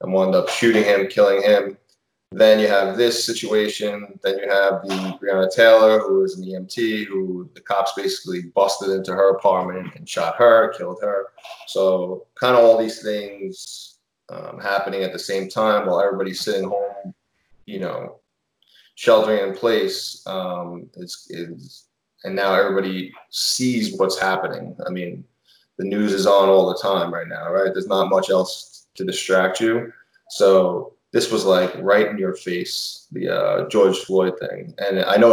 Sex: male